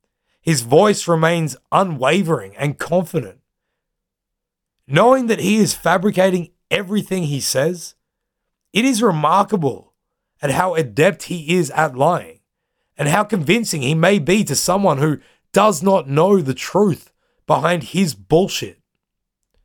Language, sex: English, male